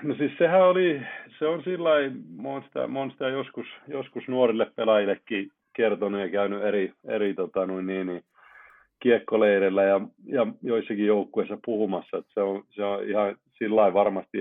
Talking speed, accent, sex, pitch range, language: 135 wpm, native, male, 95-110 Hz, Finnish